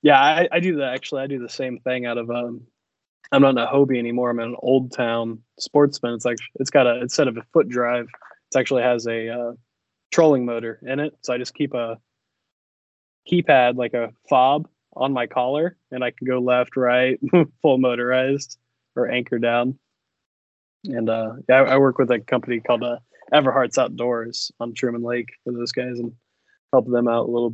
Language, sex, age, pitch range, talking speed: English, male, 20-39, 120-135 Hz, 205 wpm